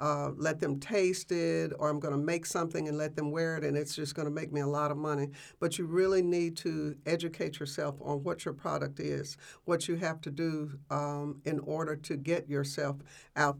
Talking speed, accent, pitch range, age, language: 225 wpm, American, 145-165 Hz, 50-69, English